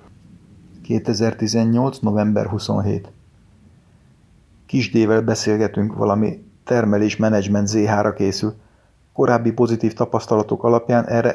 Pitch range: 100-115 Hz